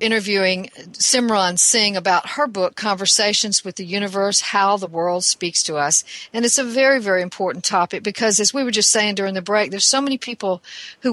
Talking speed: 200 wpm